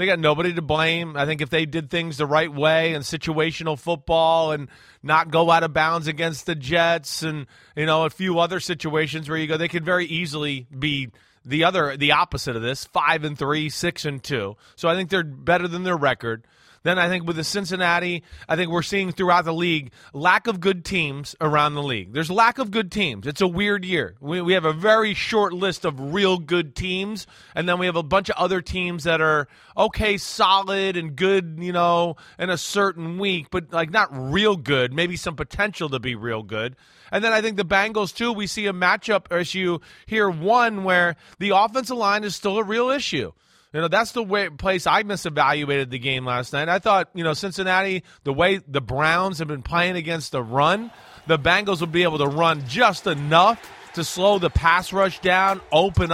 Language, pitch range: English, 155-190 Hz